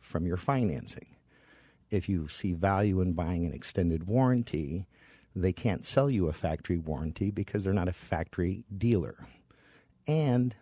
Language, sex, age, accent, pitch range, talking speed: English, male, 50-69, American, 85-115 Hz, 145 wpm